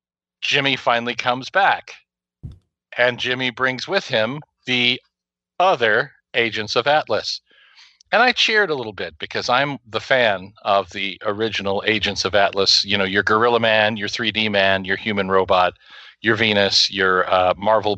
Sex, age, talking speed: male, 40-59, 155 wpm